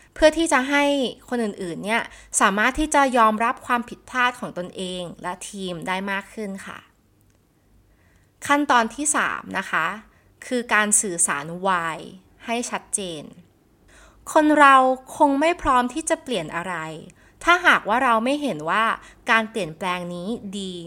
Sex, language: female, Thai